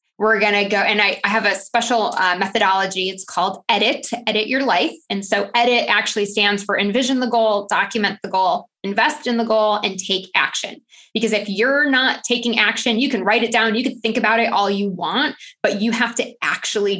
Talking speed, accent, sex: 215 wpm, American, female